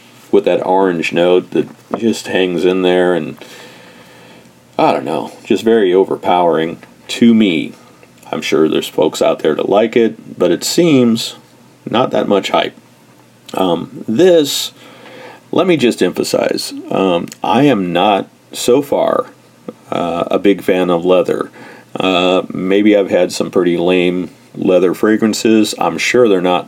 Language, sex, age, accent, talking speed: English, male, 40-59, American, 145 wpm